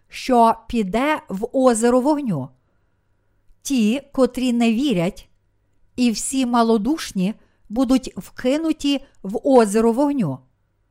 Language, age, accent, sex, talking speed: Ukrainian, 50-69, native, female, 95 wpm